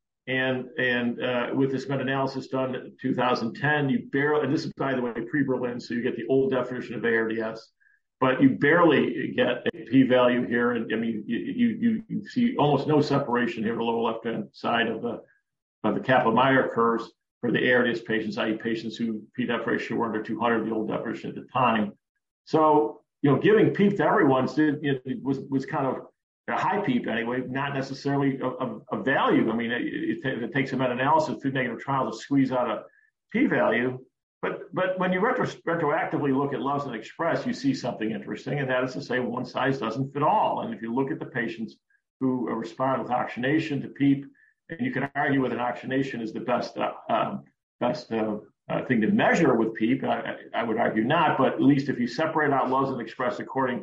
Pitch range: 120-140 Hz